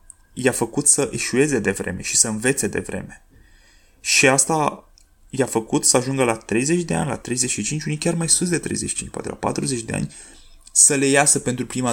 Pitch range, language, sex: 100-140 Hz, Romanian, male